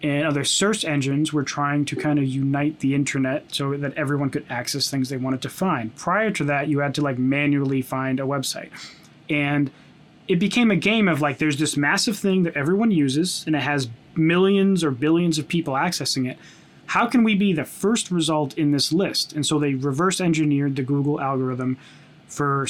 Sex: male